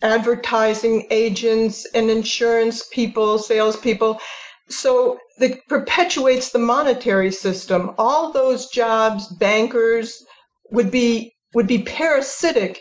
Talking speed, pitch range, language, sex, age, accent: 95 wpm, 210-255 Hz, English, female, 50-69, American